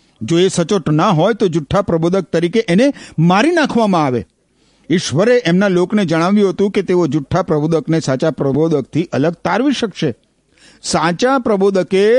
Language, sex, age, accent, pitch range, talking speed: Gujarati, male, 50-69, native, 115-185 Hz, 120 wpm